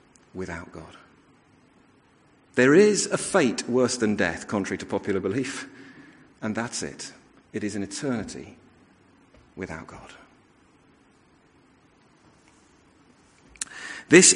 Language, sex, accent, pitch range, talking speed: English, male, British, 130-195 Hz, 95 wpm